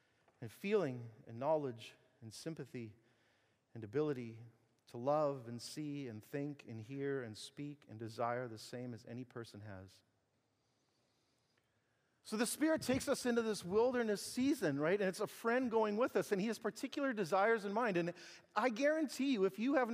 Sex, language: male, English